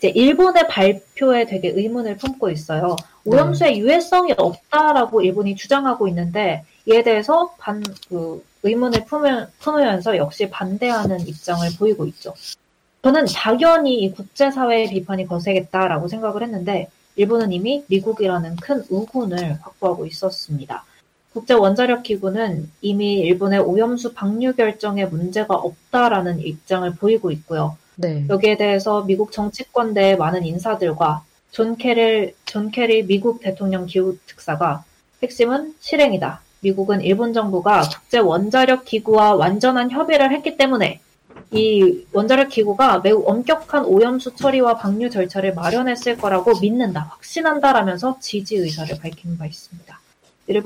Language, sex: Korean, female